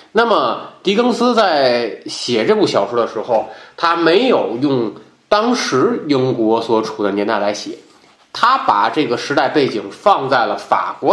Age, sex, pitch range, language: 20-39, male, 115-175 Hz, Chinese